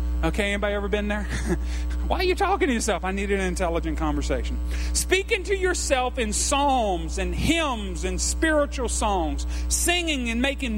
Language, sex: English, male